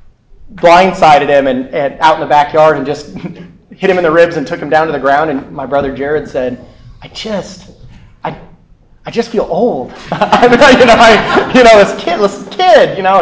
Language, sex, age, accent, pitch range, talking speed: English, male, 30-49, American, 155-220 Hz, 205 wpm